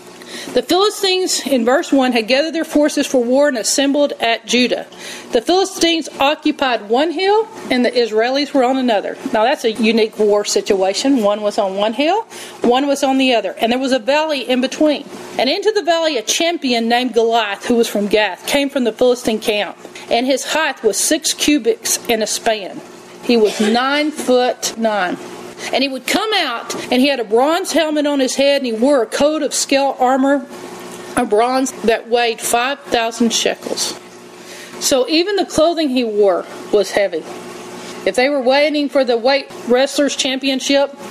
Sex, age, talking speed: female, 40-59, 180 wpm